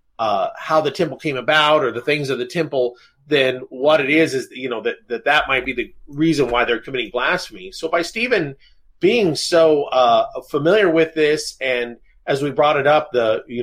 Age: 30-49